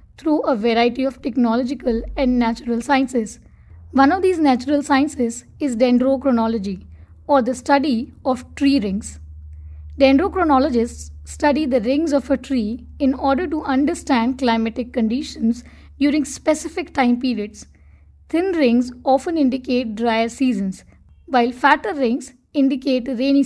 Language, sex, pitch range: English, female, 240-280 Hz